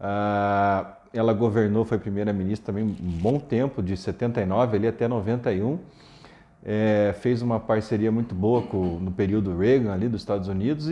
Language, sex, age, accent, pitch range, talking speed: Portuguese, male, 40-59, Brazilian, 100-140 Hz, 155 wpm